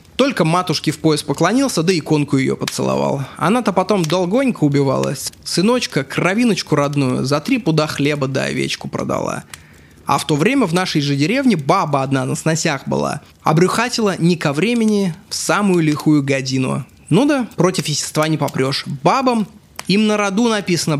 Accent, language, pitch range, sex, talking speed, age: native, Russian, 140-195 Hz, male, 160 wpm, 20-39